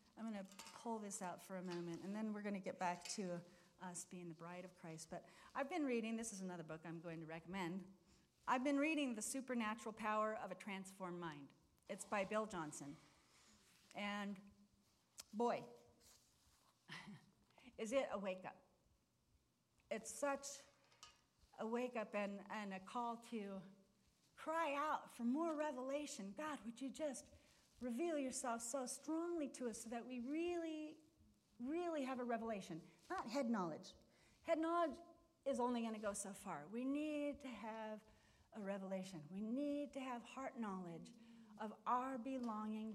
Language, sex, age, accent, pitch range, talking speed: English, female, 40-59, American, 195-265 Hz, 160 wpm